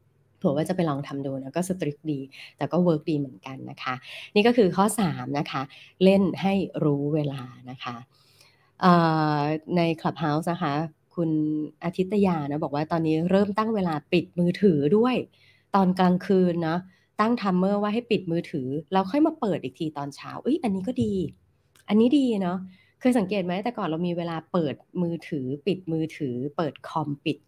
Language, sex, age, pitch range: Thai, female, 20-39, 145-190 Hz